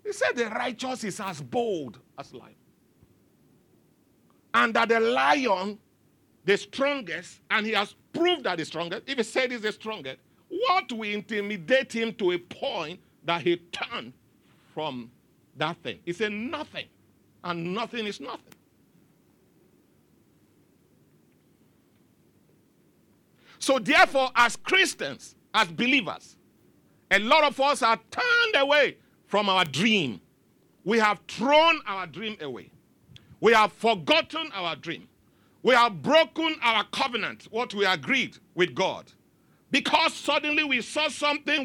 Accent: Nigerian